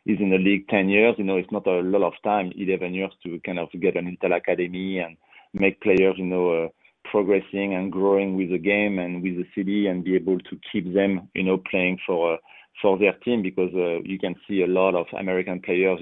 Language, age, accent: English, 30-49, French